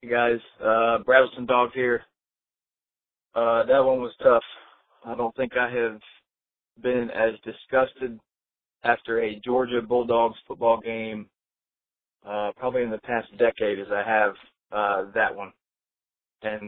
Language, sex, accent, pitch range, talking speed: English, male, American, 105-125 Hz, 140 wpm